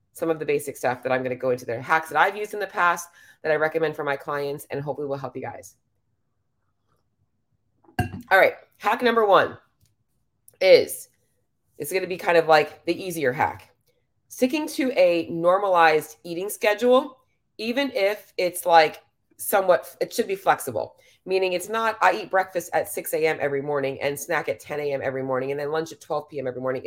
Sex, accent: female, American